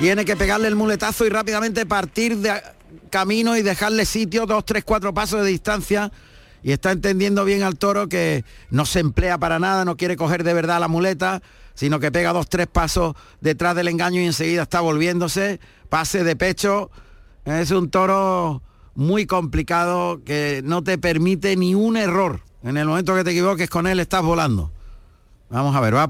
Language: Spanish